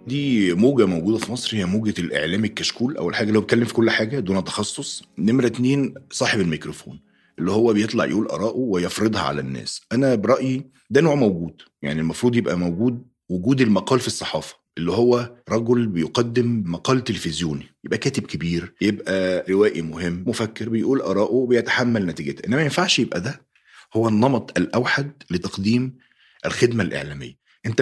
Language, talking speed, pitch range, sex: Arabic, 155 wpm, 90-125 Hz, male